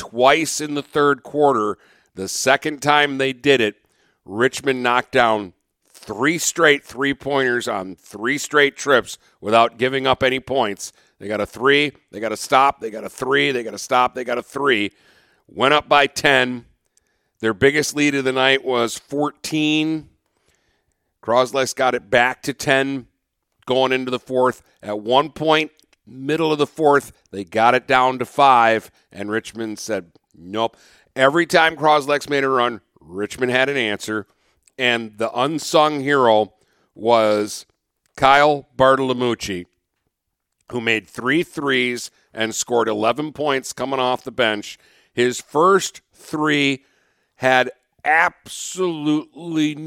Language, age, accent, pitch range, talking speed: English, 50-69, American, 115-145 Hz, 145 wpm